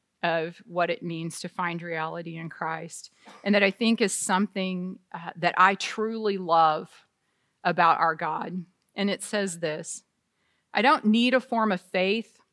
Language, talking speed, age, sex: English, 165 wpm, 40-59, female